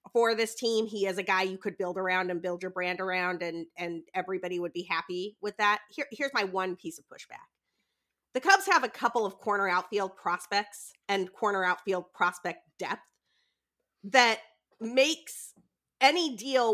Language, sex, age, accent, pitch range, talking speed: English, female, 30-49, American, 190-255 Hz, 175 wpm